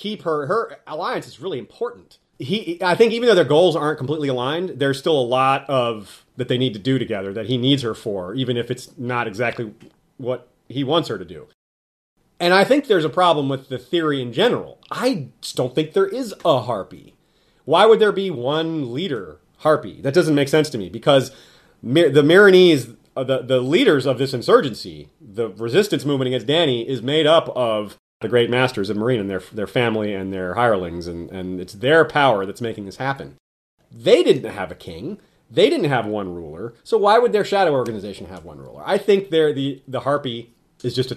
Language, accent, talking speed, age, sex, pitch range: English, American, 215 wpm, 30-49, male, 120-155 Hz